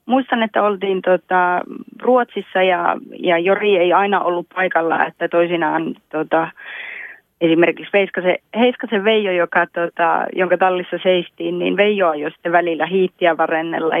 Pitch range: 165-190 Hz